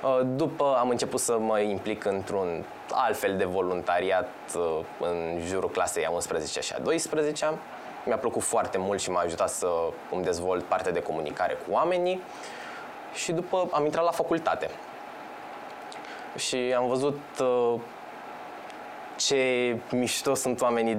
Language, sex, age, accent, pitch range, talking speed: Romanian, male, 20-39, native, 120-155 Hz, 135 wpm